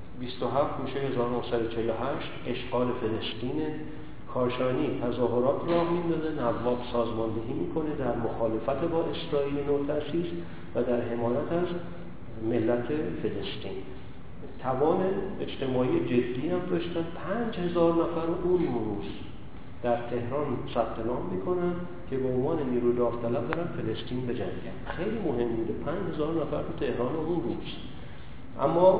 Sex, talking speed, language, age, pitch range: male, 120 wpm, Persian, 50-69, 120-150 Hz